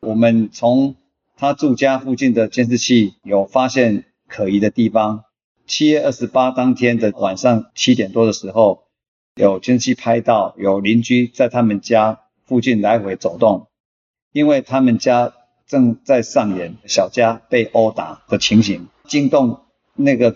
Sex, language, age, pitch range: male, Chinese, 50-69, 110-135 Hz